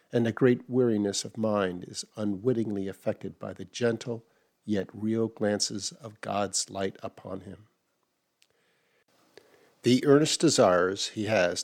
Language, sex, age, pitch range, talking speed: English, male, 50-69, 105-125 Hz, 130 wpm